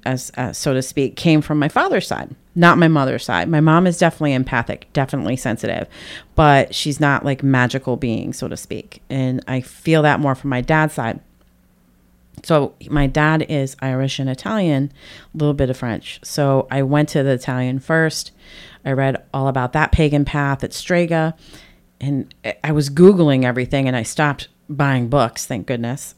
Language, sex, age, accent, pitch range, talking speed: English, female, 30-49, American, 130-160 Hz, 180 wpm